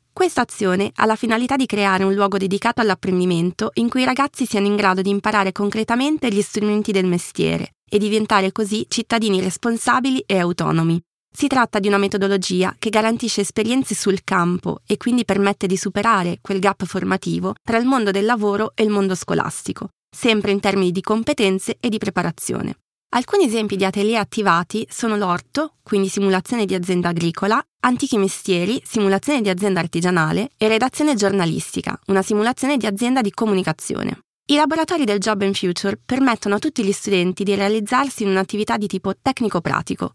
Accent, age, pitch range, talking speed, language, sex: native, 20-39, 190-230 Hz, 165 wpm, Italian, female